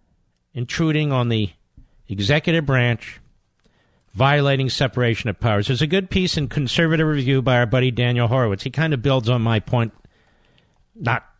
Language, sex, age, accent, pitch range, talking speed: English, male, 50-69, American, 120-165 Hz, 155 wpm